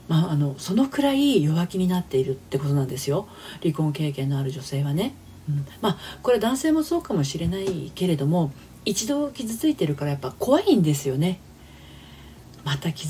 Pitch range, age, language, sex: 145-205 Hz, 40-59, Japanese, female